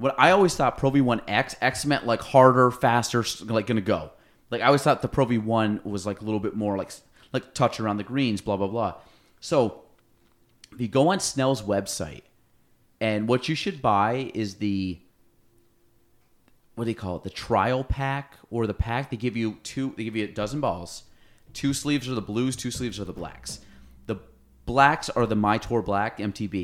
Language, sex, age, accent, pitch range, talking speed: English, male, 30-49, American, 100-125 Hz, 200 wpm